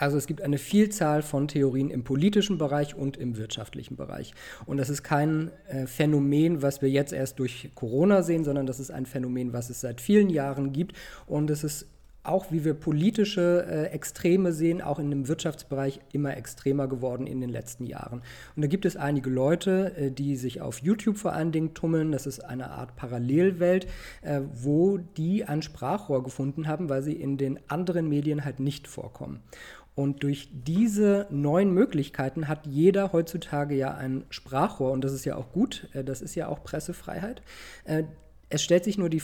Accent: German